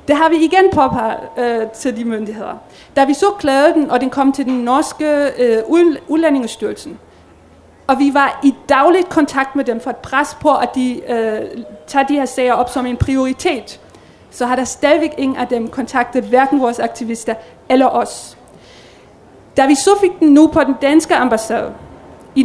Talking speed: 175 wpm